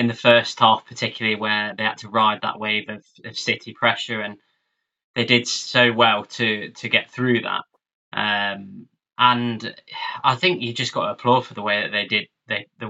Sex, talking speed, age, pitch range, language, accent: male, 200 wpm, 20-39, 105-120 Hz, English, British